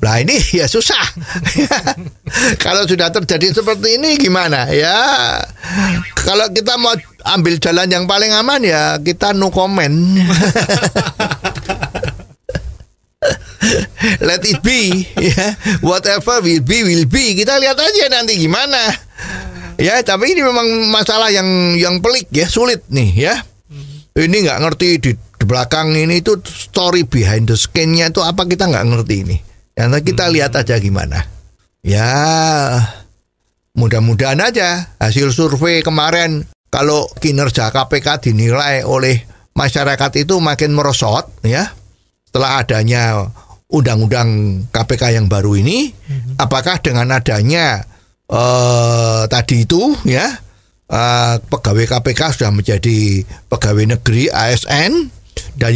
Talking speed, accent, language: 120 wpm, native, Indonesian